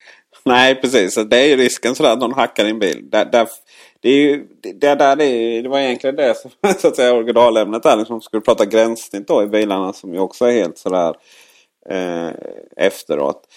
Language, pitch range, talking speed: Swedish, 105-125 Hz, 185 wpm